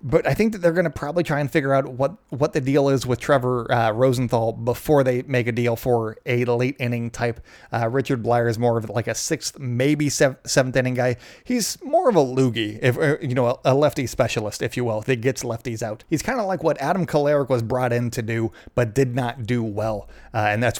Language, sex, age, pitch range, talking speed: English, male, 30-49, 120-150 Hz, 230 wpm